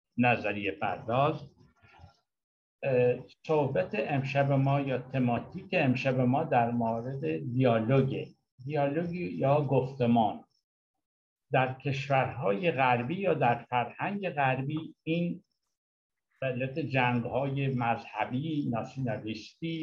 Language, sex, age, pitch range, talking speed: Persian, male, 60-79, 120-150 Hz, 80 wpm